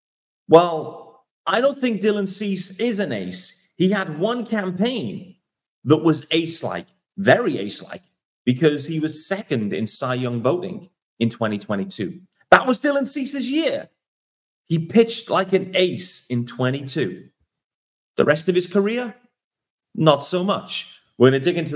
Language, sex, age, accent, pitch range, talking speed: English, male, 30-49, British, 120-190 Hz, 145 wpm